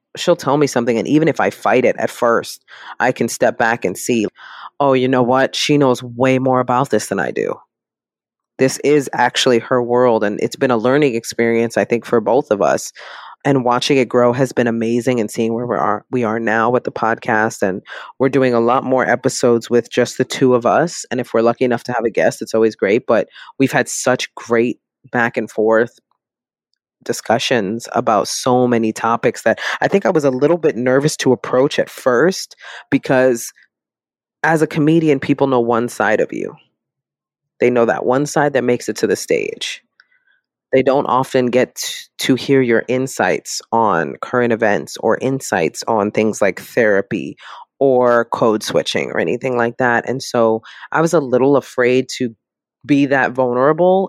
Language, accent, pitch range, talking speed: English, American, 115-140 Hz, 190 wpm